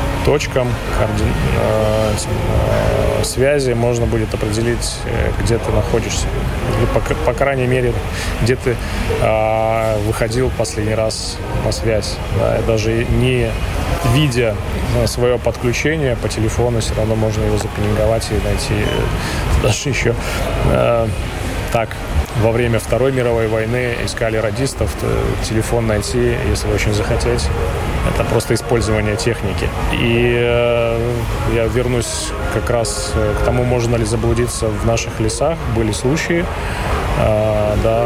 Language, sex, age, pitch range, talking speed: Russian, male, 20-39, 105-120 Hz, 110 wpm